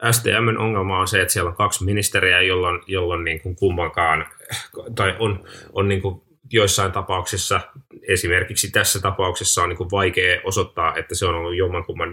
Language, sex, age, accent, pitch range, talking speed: Finnish, male, 20-39, native, 85-100 Hz, 165 wpm